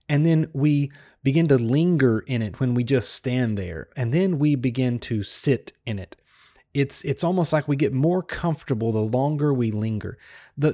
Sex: male